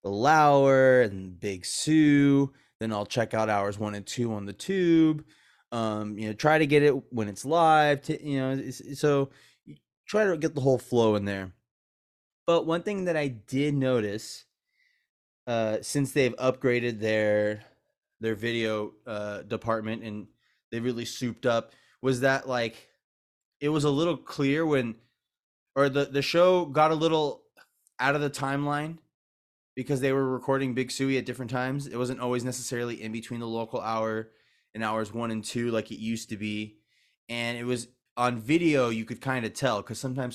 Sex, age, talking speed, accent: male, 20-39, 180 wpm, American